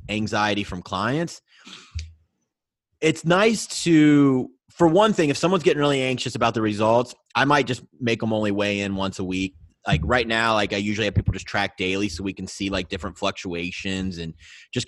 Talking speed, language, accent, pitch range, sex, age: 195 wpm, English, American, 100-145 Hz, male, 30-49